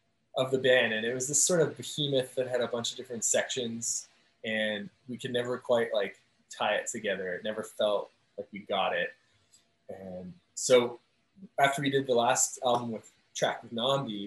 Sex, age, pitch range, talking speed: male, 20-39, 110-130 Hz, 190 wpm